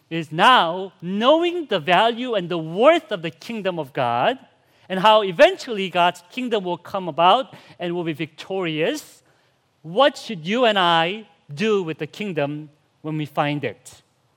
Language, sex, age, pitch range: English, male, 40-59, 145-200 Hz